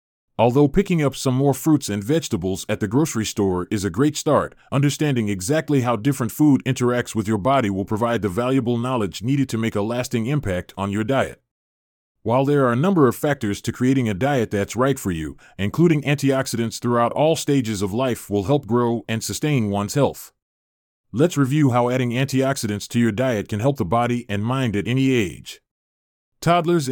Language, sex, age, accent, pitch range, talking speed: English, male, 30-49, American, 105-140 Hz, 190 wpm